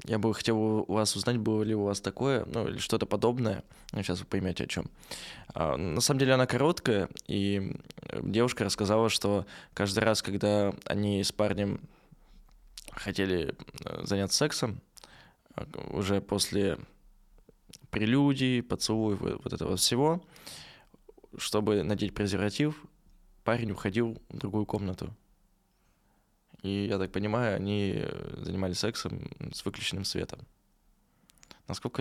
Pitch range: 95-115 Hz